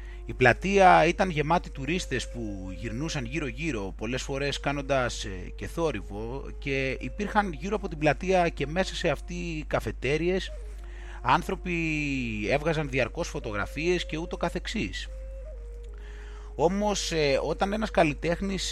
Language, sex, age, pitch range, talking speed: Greek, male, 30-49, 125-180 Hz, 110 wpm